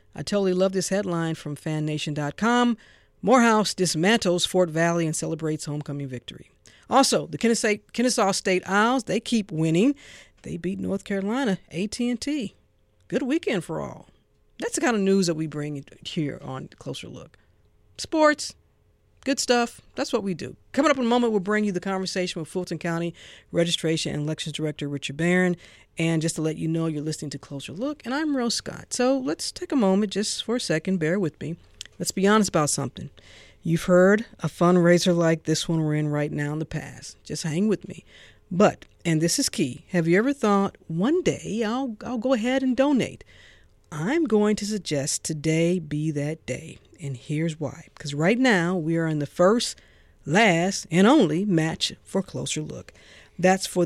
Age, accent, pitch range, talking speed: 50-69, American, 160-215 Hz, 185 wpm